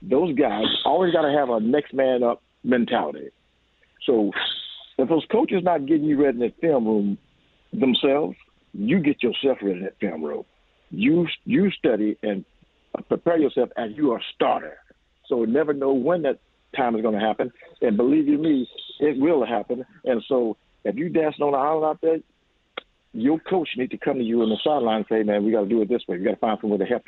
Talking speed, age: 215 wpm, 60-79